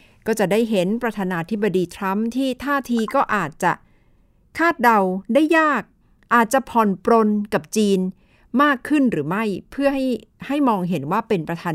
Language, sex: Thai, female